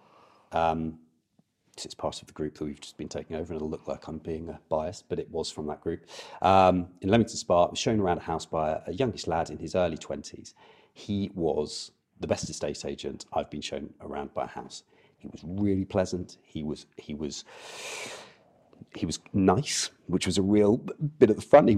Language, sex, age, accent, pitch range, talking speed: English, male, 30-49, British, 80-105 Hz, 215 wpm